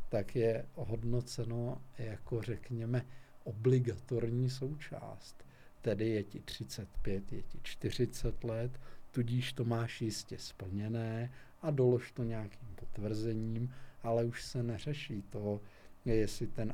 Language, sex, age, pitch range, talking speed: Czech, male, 50-69, 105-120 Hz, 115 wpm